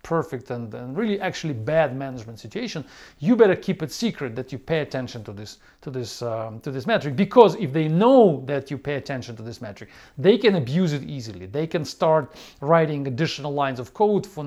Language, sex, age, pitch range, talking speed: English, male, 40-59, 135-185 Hz, 205 wpm